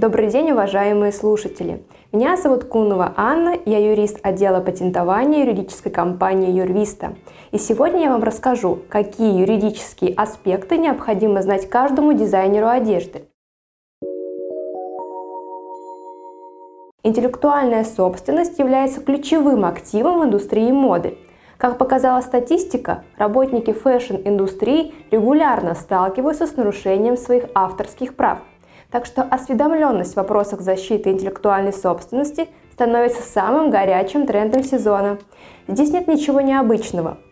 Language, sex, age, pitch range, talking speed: Russian, female, 20-39, 195-270 Hz, 105 wpm